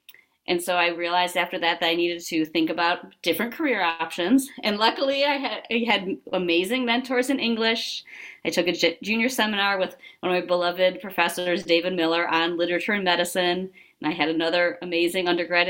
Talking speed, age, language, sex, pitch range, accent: 180 wpm, 30-49, English, female, 175-240 Hz, American